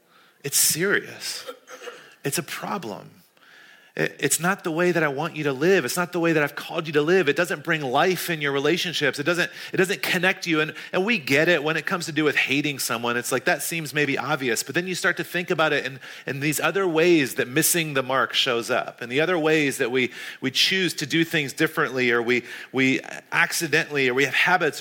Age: 30-49